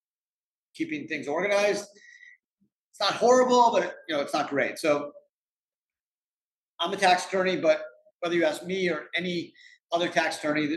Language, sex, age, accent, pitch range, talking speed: English, male, 40-59, American, 150-245 Hz, 145 wpm